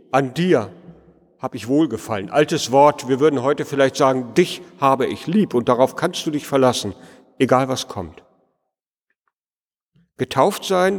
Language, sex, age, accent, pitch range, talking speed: German, male, 50-69, German, 140-185 Hz, 145 wpm